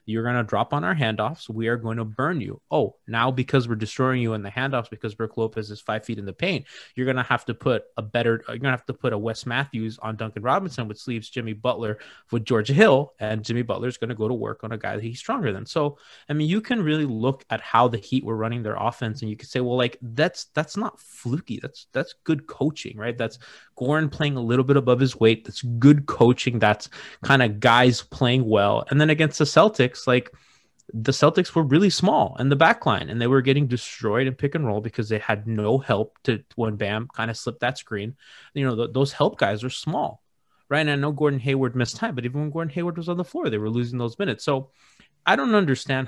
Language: English